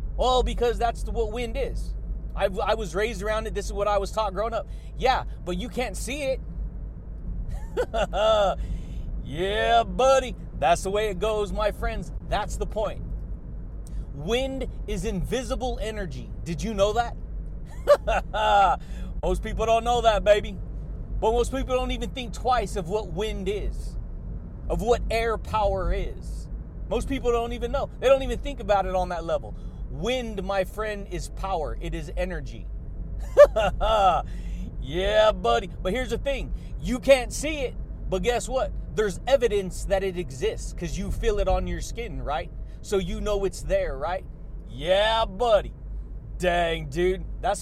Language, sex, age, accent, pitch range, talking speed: English, male, 30-49, American, 190-240 Hz, 160 wpm